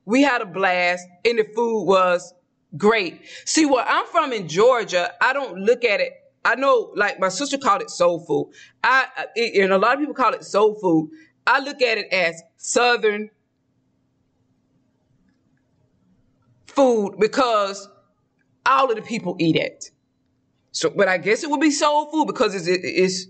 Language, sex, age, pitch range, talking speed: English, female, 20-39, 180-245 Hz, 165 wpm